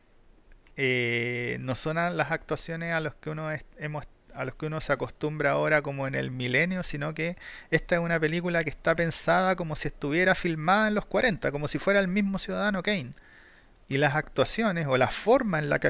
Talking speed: 185 wpm